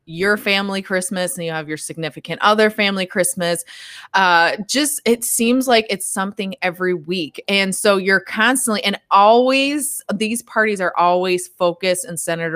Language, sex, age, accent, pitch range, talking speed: English, female, 20-39, American, 170-205 Hz, 160 wpm